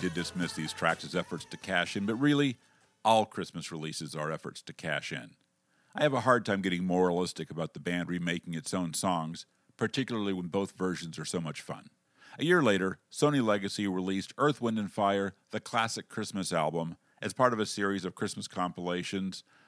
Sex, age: male, 50-69